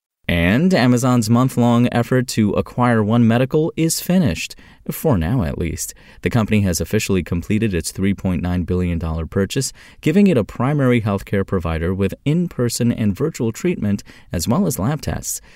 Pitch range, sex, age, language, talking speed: 90-120 Hz, male, 30-49, English, 150 wpm